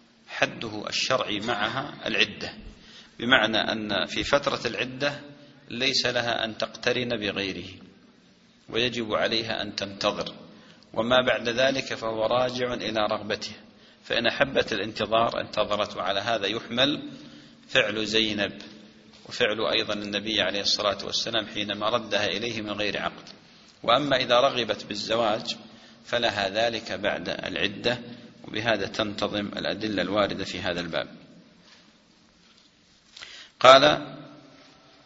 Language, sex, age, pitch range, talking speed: English, male, 40-59, 105-120 Hz, 105 wpm